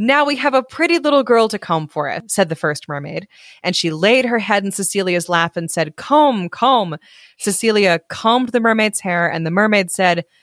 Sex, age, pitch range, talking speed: female, 20-39, 165-230 Hz, 205 wpm